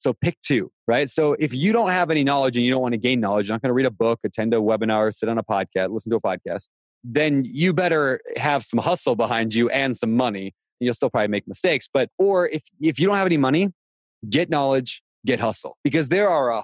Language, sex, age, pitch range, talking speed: English, male, 20-39, 110-145 Hz, 255 wpm